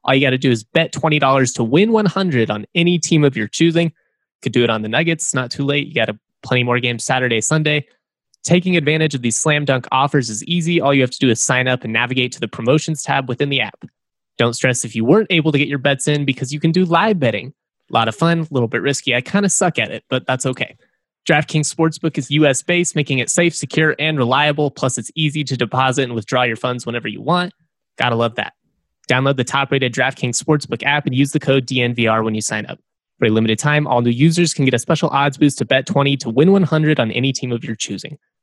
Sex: male